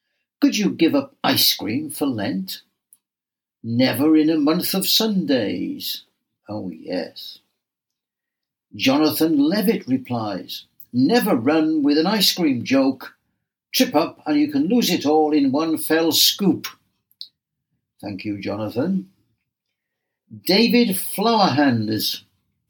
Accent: British